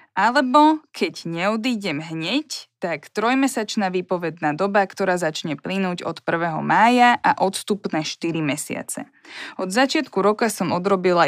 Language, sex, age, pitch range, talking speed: Slovak, female, 20-39, 175-220 Hz, 120 wpm